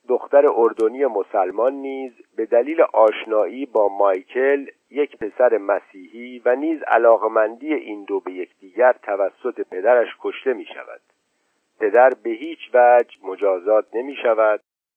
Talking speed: 125 wpm